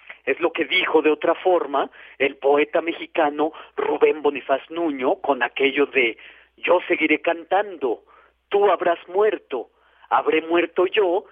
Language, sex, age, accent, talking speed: Spanish, male, 40-59, Mexican, 135 wpm